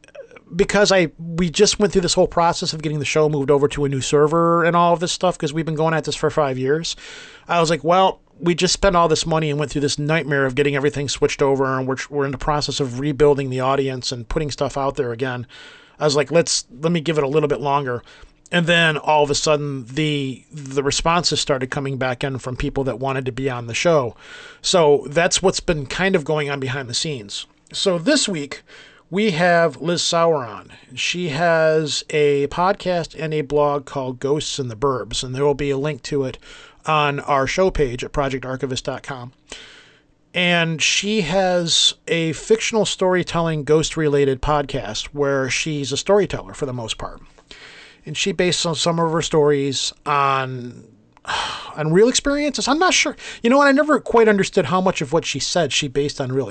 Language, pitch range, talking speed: English, 140-175 Hz, 205 wpm